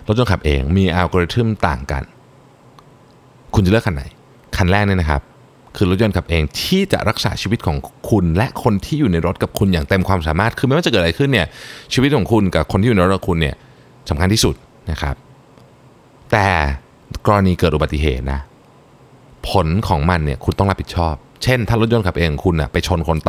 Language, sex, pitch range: Thai, male, 80-120 Hz